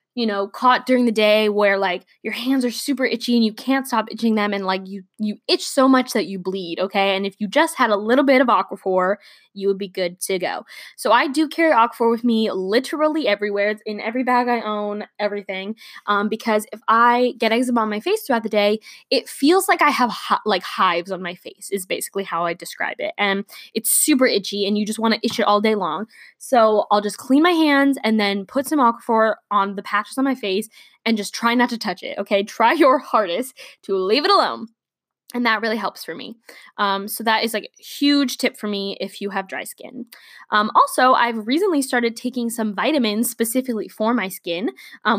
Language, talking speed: English, 225 wpm